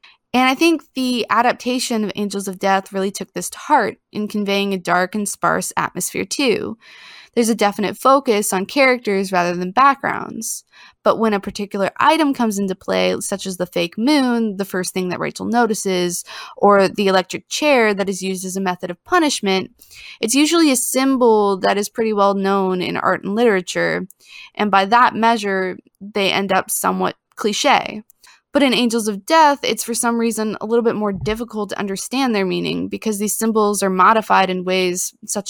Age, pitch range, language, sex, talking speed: 20-39, 190-235 Hz, English, female, 185 wpm